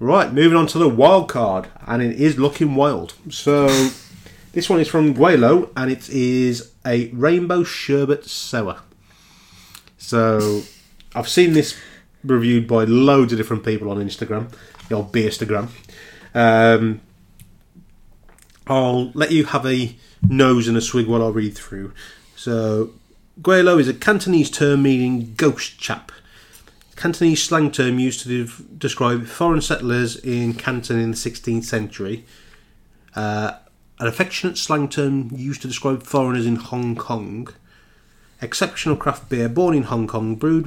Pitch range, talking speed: 110-140 Hz, 145 wpm